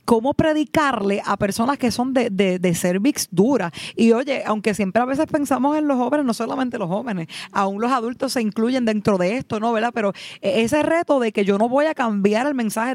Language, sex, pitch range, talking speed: Spanish, female, 205-270 Hz, 220 wpm